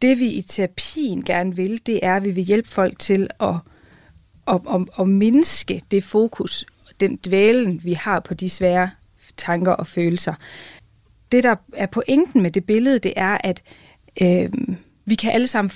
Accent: native